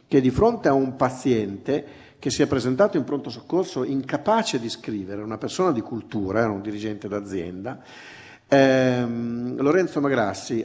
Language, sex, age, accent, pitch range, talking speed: Italian, male, 50-69, native, 110-145 Hz, 145 wpm